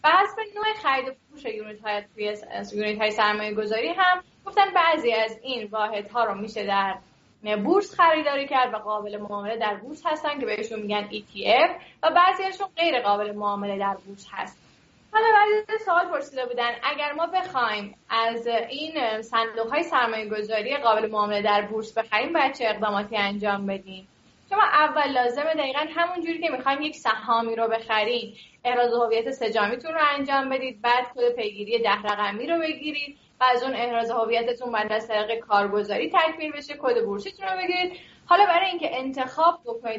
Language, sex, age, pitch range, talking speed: Persian, female, 10-29, 215-310 Hz, 165 wpm